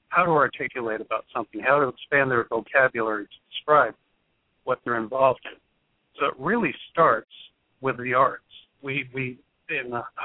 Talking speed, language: 160 wpm, English